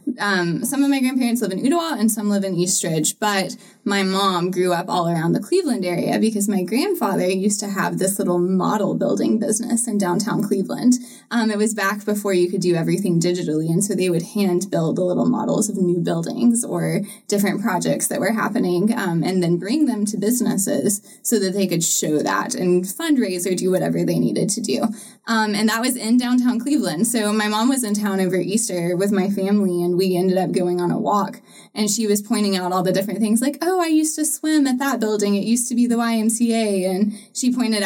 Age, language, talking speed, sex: 10-29, English, 220 wpm, female